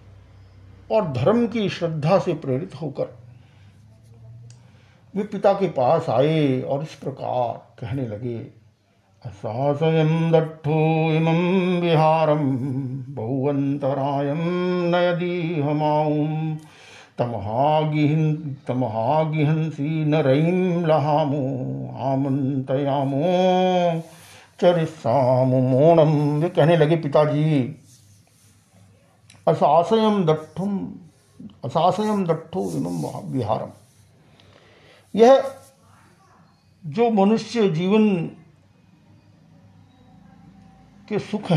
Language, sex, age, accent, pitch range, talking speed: Hindi, male, 50-69, native, 115-160 Hz, 65 wpm